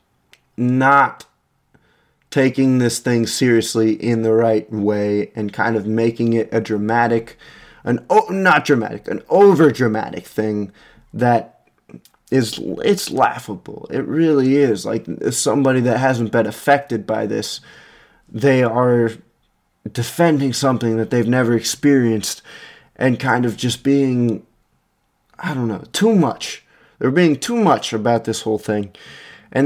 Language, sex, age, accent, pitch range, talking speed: English, male, 20-39, American, 110-130 Hz, 135 wpm